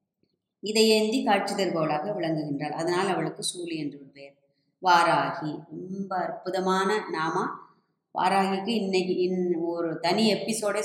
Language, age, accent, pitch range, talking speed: Tamil, 20-39, native, 165-215 Hz, 115 wpm